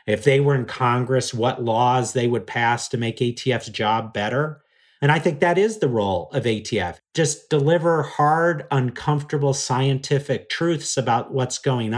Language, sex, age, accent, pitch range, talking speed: English, male, 50-69, American, 120-150 Hz, 165 wpm